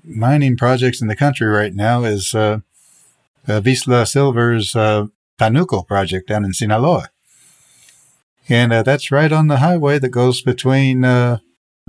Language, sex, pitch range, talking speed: English, male, 110-130 Hz, 145 wpm